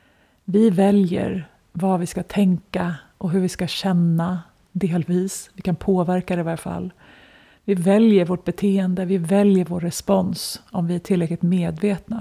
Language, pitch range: Swedish, 175-195 Hz